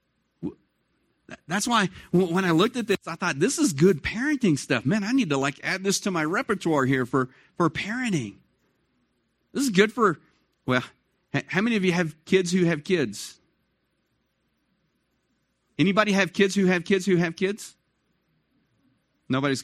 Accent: American